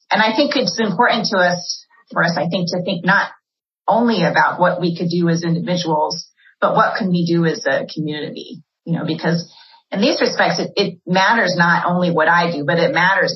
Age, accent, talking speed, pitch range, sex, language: 30-49, American, 210 wpm, 160-190 Hz, female, English